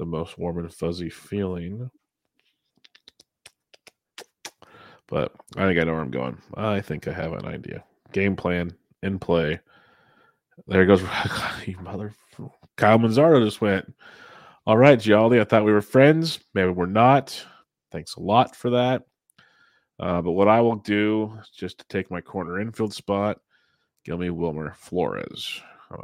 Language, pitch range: English, 90-105 Hz